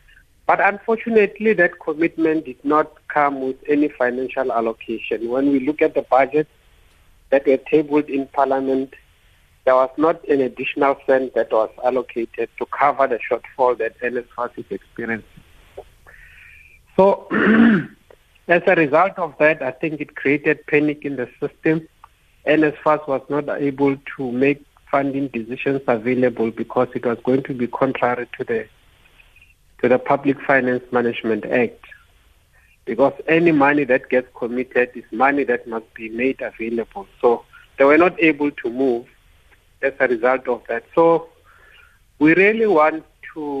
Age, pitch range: 50-69, 115-150 Hz